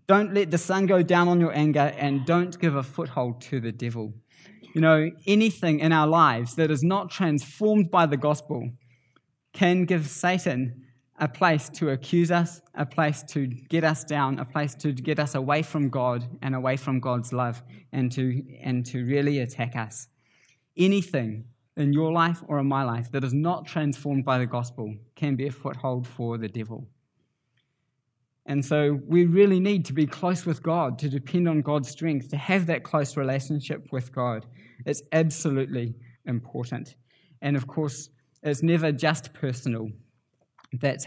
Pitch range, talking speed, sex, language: 125-155 Hz, 170 wpm, male, English